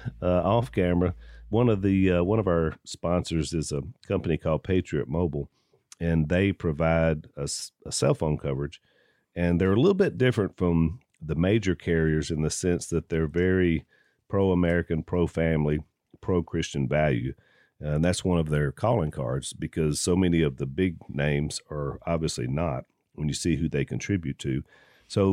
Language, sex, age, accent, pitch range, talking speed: English, male, 40-59, American, 80-100 Hz, 160 wpm